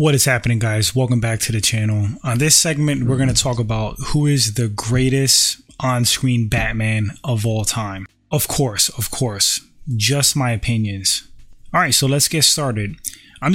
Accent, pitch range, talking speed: American, 115-145 Hz, 175 wpm